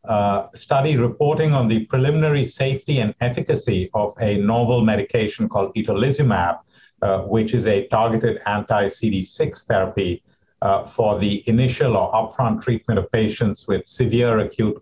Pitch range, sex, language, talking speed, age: 100-125 Hz, male, English, 140 wpm, 50-69